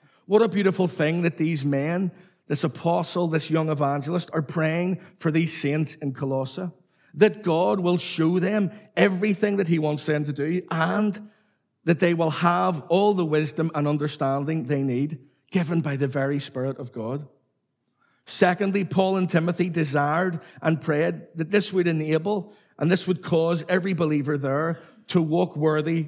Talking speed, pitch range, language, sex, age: 165 wpm, 155-185 Hz, English, male, 50-69